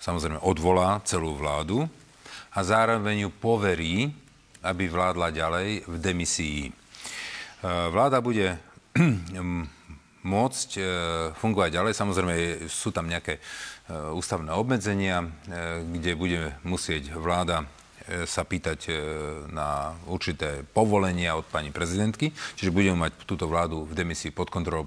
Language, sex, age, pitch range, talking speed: Slovak, male, 40-59, 80-100 Hz, 110 wpm